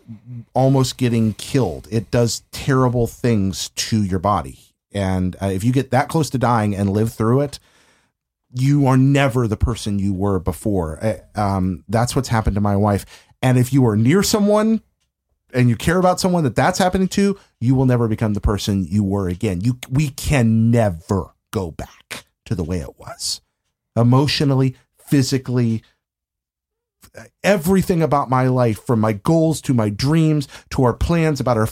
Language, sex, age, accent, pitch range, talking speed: English, male, 40-59, American, 110-150 Hz, 170 wpm